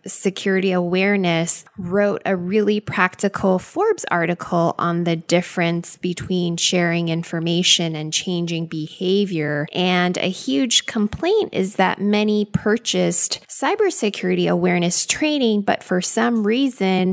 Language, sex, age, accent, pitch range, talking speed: English, female, 20-39, American, 175-220 Hz, 110 wpm